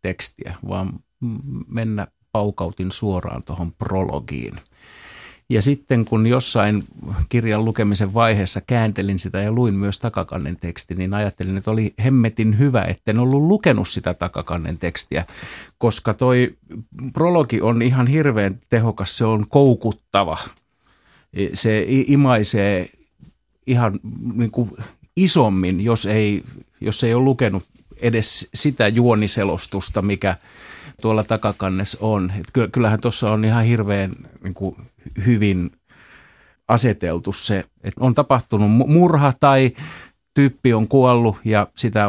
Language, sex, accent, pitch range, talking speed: Finnish, male, native, 100-120 Hz, 115 wpm